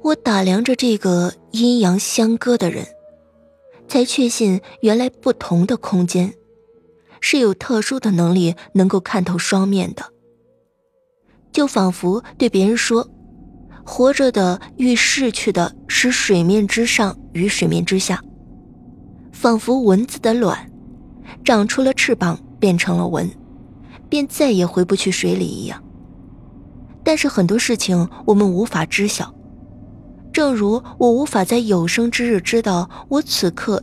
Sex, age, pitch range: female, 20-39, 180-240 Hz